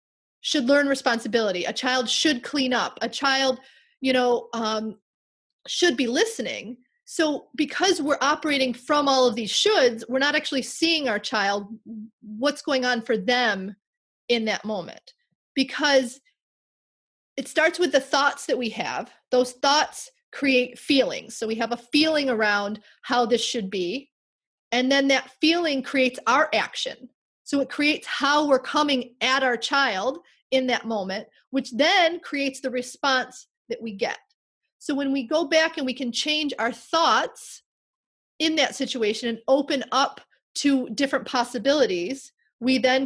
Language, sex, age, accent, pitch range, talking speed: English, female, 30-49, American, 240-290 Hz, 155 wpm